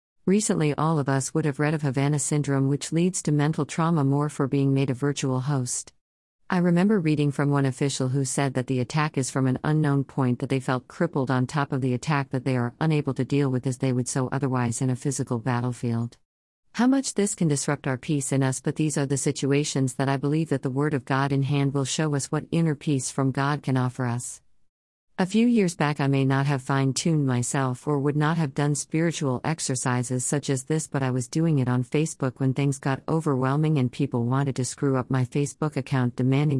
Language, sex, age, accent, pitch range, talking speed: English, female, 50-69, American, 130-150 Hz, 230 wpm